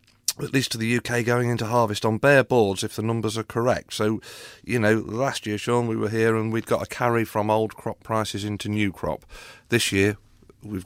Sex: male